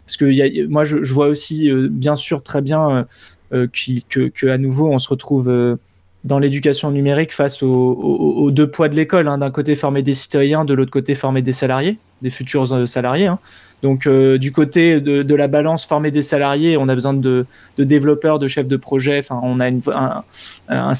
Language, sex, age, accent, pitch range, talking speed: French, male, 20-39, French, 130-150 Hz, 170 wpm